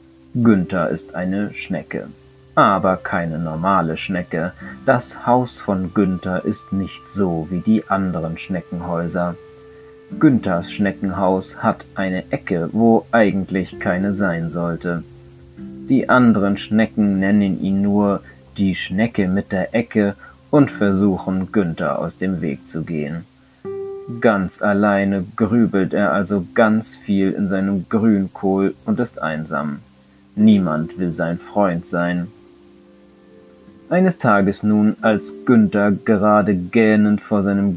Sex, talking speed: male, 120 wpm